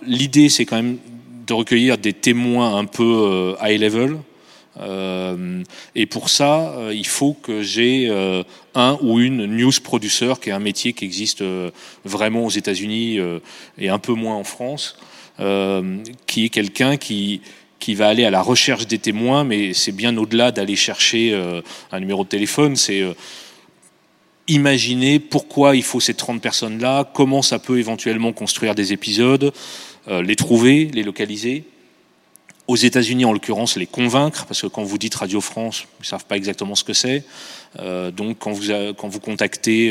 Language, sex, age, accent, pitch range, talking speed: French, male, 30-49, French, 100-120 Hz, 175 wpm